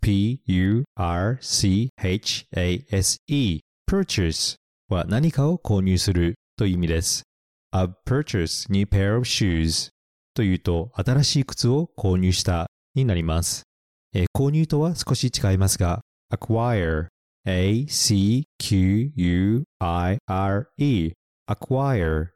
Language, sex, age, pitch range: Japanese, male, 40-59, 90-125 Hz